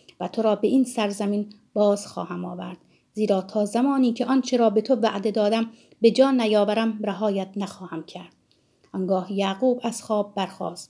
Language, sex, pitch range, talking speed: Persian, female, 205-245 Hz, 165 wpm